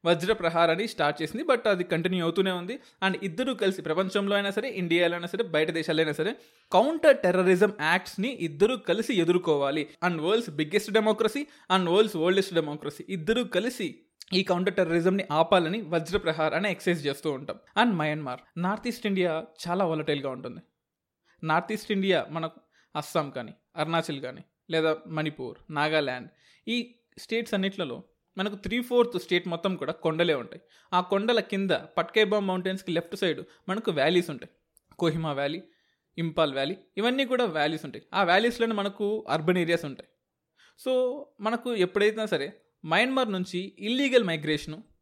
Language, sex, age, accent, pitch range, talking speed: Telugu, male, 20-39, native, 165-215 Hz, 140 wpm